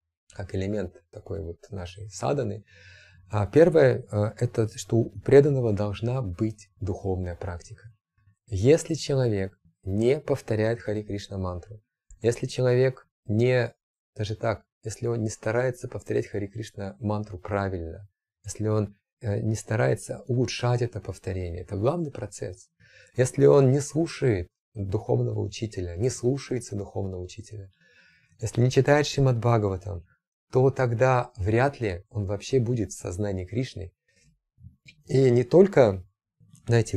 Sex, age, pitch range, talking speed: male, 30-49, 100-125 Hz, 120 wpm